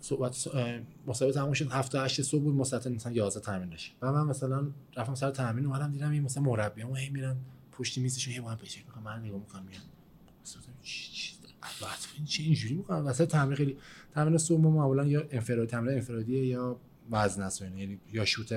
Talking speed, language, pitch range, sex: 160 wpm, Persian, 115-150 Hz, male